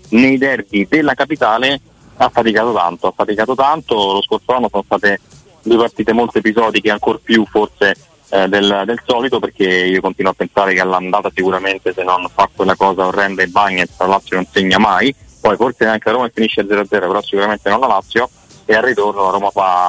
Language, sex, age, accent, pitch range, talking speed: Italian, male, 20-39, native, 100-110 Hz, 195 wpm